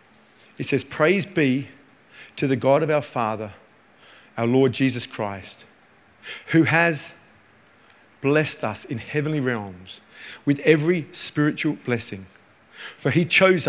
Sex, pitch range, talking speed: male, 130-160 Hz, 125 wpm